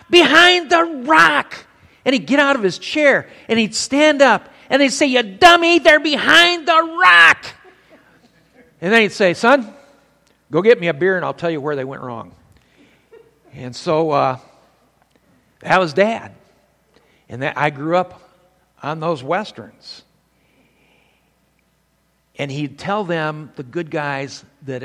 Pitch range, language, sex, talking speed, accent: 135-190 Hz, English, male, 150 wpm, American